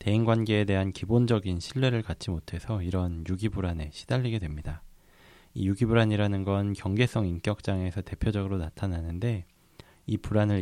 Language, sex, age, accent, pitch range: Korean, male, 20-39, native, 90-115 Hz